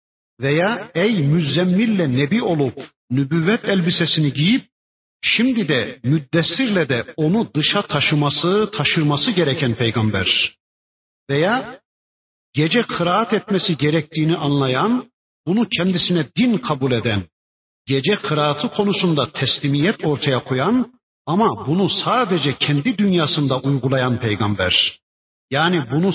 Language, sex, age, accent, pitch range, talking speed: Turkish, male, 50-69, native, 125-185 Hz, 100 wpm